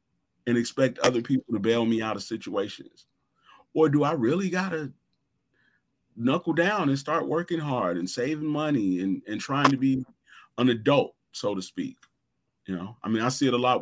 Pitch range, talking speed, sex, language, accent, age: 110-145 Hz, 190 wpm, male, English, American, 30-49